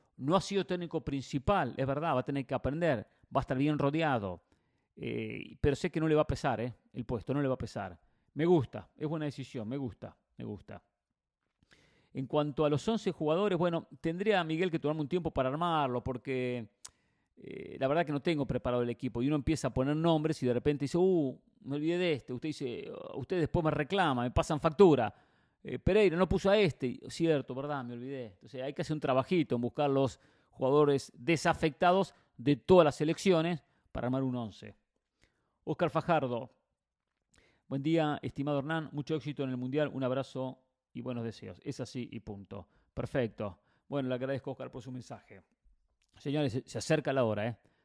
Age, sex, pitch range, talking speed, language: 40-59, male, 125-160 Hz, 195 wpm, English